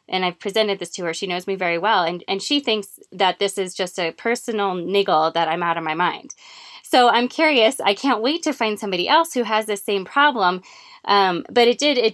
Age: 20-39